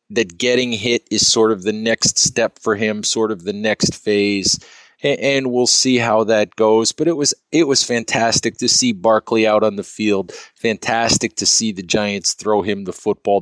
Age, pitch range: 40-59, 100-115 Hz